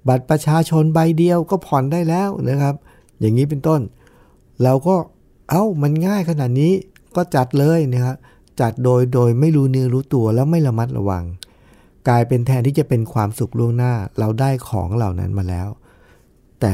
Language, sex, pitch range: Thai, male, 105-140 Hz